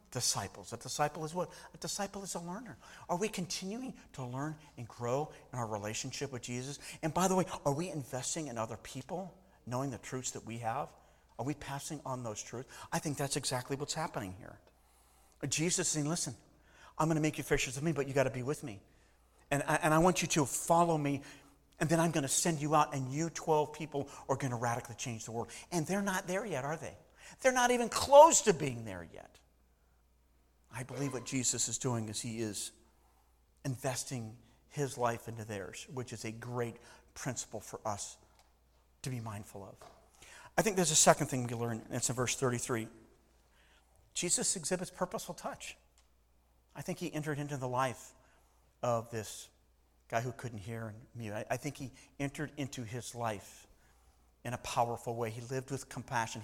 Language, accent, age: English, American, 50-69